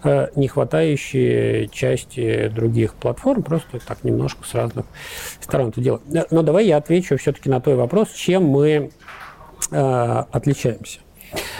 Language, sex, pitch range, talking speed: Russian, male, 125-165 Hz, 130 wpm